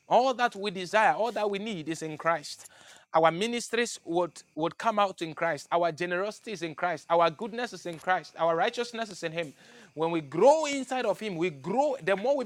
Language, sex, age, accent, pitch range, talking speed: English, male, 30-49, Nigerian, 170-215 Hz, 220 wpm